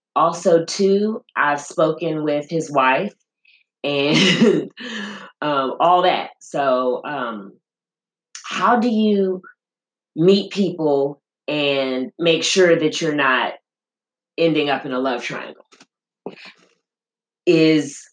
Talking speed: 105 wpm